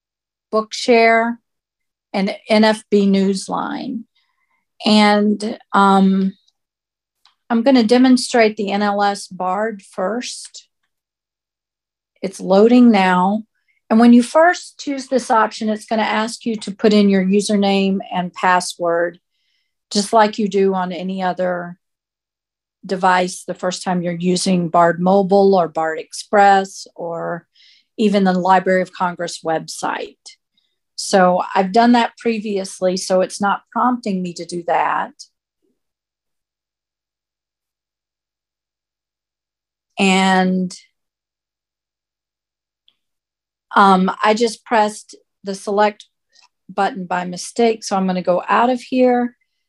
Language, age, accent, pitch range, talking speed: English, 50-69, American, 185-230 Hz, 110 wpm